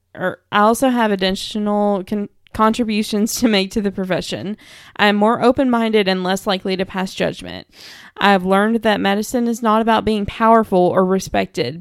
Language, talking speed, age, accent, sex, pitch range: English, 175 wpm, 20-39, American, female, 180-215 Hz